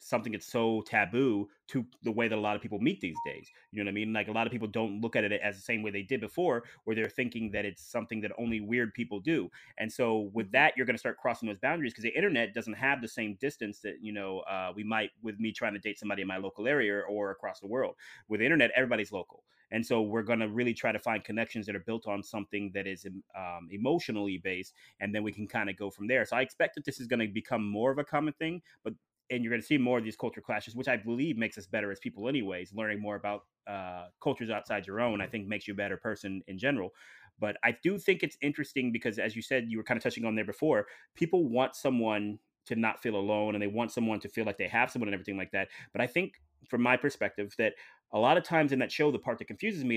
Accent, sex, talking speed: American, male, 275 wpm